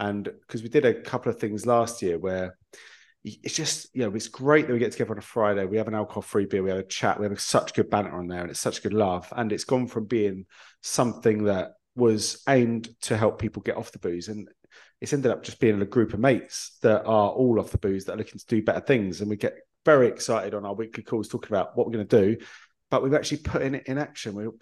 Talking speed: 275 wpm